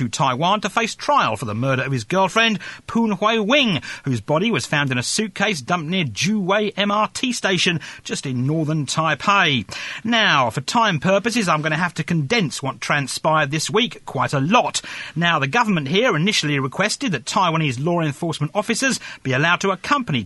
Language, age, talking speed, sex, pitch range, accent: English, 40-59, 185 wpm, male, 150-220 Hz, British